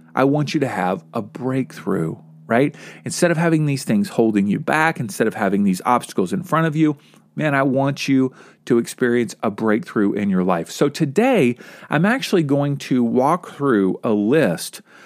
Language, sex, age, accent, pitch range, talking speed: English, male, 40-59, American, 125-195 Hz, 185 wpm